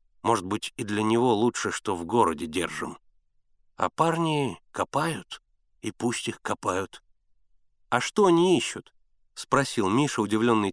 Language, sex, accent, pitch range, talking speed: Russian, male, native, 100-135 Hz, 135 wpm